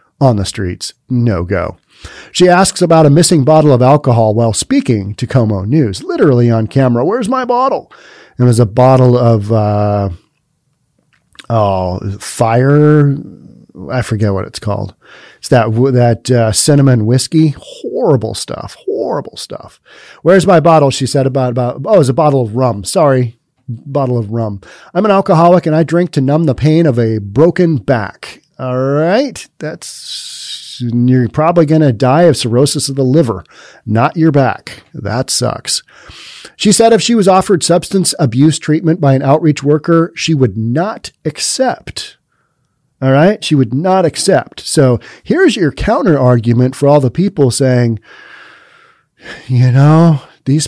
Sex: male